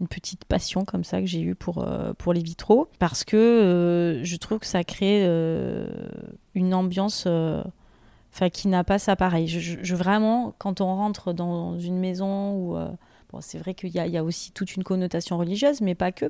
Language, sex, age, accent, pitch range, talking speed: French, female, 30-49, French, 175-205 Hz, 215 wpm